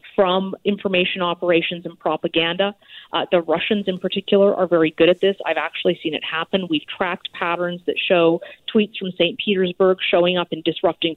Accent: American